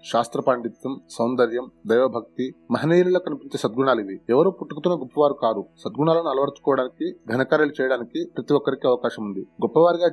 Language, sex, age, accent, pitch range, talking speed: Telugu, male, 30-49, native, 130-160 Hz, 125 wpm